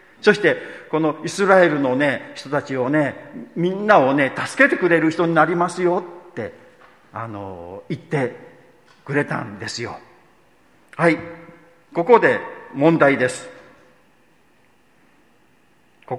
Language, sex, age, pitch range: Japanese, male, 50-69, 120-185 Hz